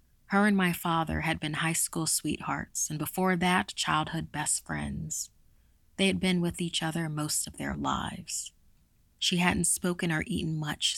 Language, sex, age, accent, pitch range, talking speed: English, female, 30-49, American, 150-180 Hz, 170 wpm